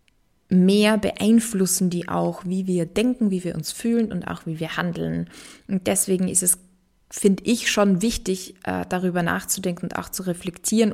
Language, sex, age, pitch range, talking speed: German, female, 20-39, 175-200 Hz, 170 wpm